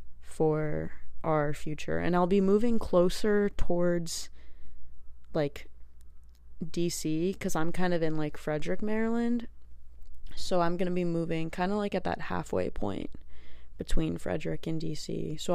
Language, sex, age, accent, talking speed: English, female, 20-39, American, 140 wpm